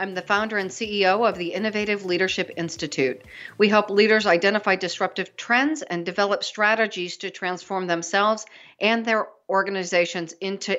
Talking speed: 145 wpm